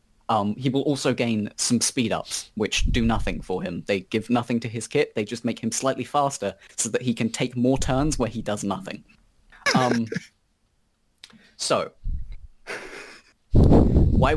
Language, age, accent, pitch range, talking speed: English, 20-39, British, 110-130 Hz, 160 wpm